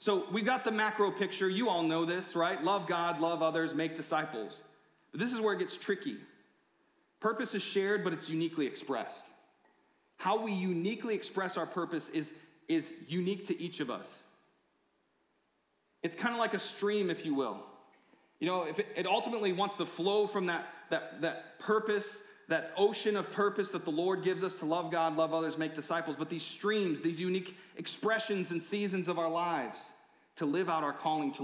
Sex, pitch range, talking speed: male, 165-210 Hz, 190 wpm